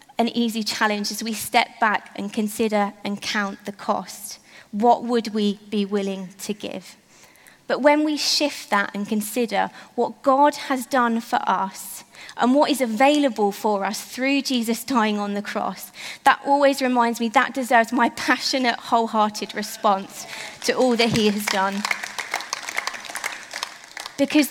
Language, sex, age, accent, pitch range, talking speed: English, female, 20-39, British, 210-255 Hz, 150 wpm